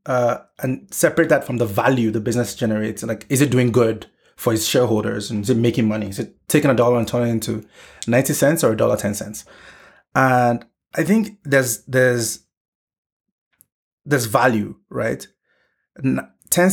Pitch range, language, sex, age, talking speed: 115-140 Hz, English, male, 30-49, 170 wpm